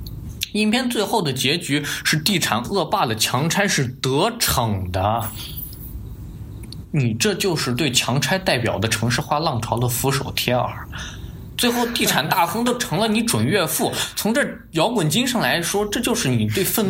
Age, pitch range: 20-39, 115-190 Hz